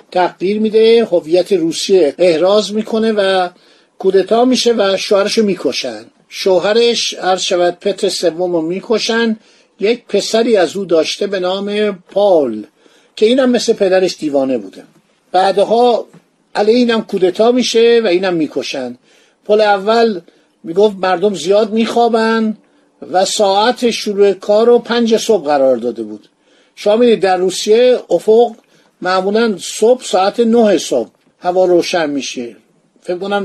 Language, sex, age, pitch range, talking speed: Persian, male, 50-69, 175-225 Hz, 125 wpm